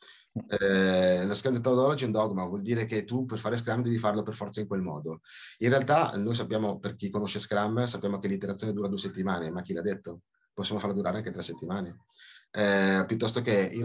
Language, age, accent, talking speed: Italian, 30-49, native, 210 wpm